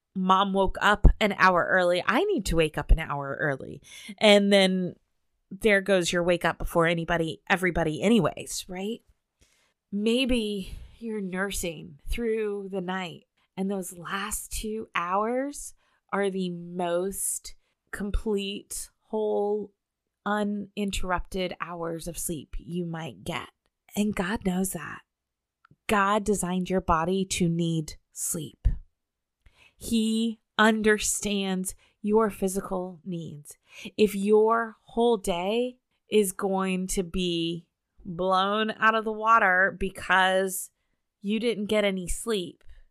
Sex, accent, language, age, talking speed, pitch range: female, American, English, 30-49, 115 wpm, 175-215 Hz